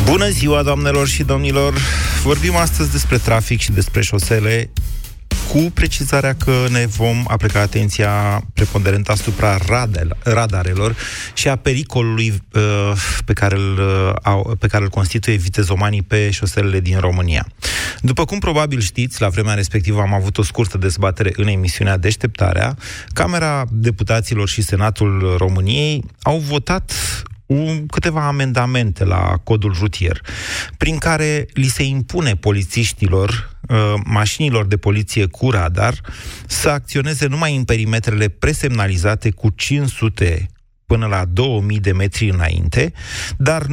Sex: male